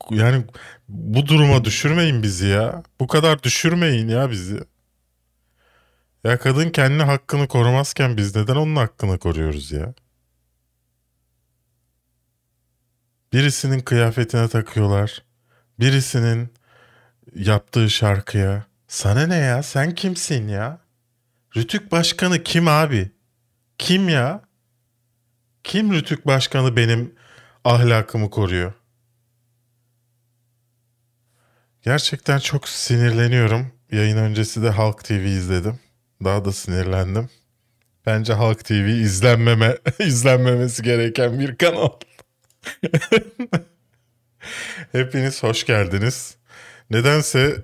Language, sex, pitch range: Turkish, male, 100-125 Hz